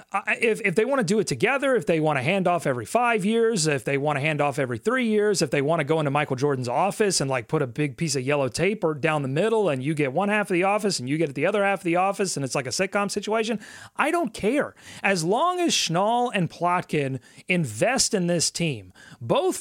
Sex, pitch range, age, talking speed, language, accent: male, 150-205 Hz, 30-49, 265 wpm, English, American